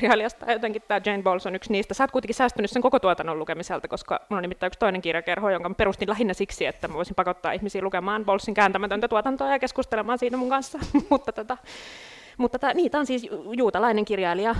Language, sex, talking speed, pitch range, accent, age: Finnish, female, 205 wpm, 160-225 Hz, native, 30-49